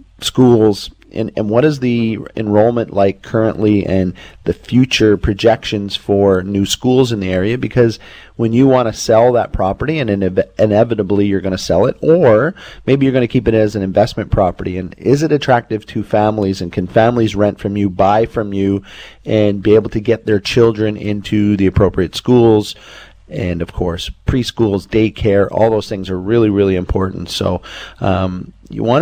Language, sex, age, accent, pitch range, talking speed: English, male, 30-49, American, 95-110 Hz, 180 wpm